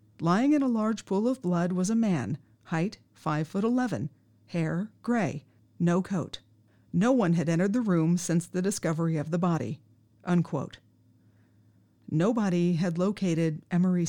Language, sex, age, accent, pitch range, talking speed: English, female, 40-59, American, 150-210 Hz, 150 wpm